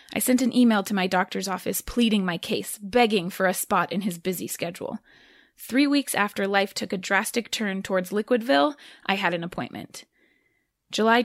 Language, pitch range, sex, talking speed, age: English, 190-255 Hz, female, 180 wpm, 20-39